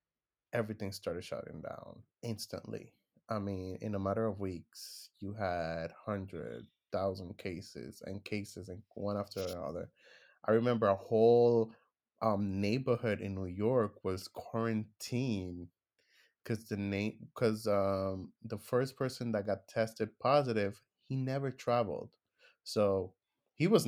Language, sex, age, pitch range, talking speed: English, male, 20-39, 100-120 Hz, 120 wpm